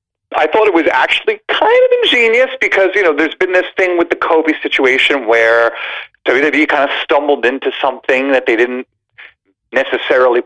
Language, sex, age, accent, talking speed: English, male, 40-59, American, 170 wpm